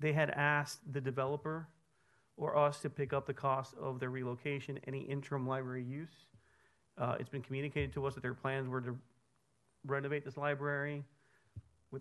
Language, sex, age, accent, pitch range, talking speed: English, male, 40-59, American, 130-140 Hz, 170 wpm